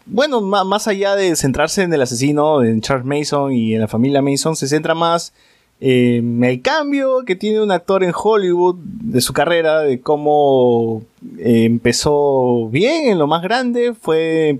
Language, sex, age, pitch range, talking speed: Spanish, male, 20-39, 120-160 Hz, 170 wpm